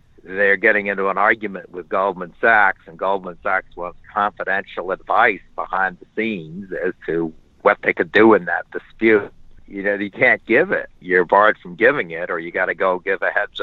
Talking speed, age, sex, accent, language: 200 wpm, 60-79, male, American, English